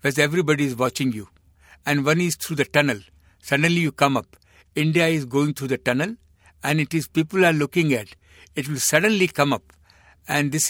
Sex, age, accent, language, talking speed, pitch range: male, 60-79, Indian, English, 195 wpm, 125-175 Hz